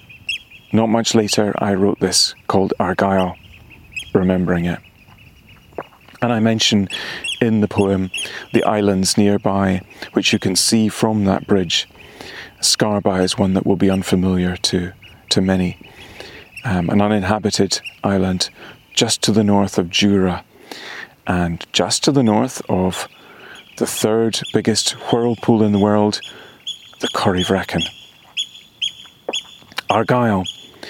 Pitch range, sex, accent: 95-115 Hz, male, British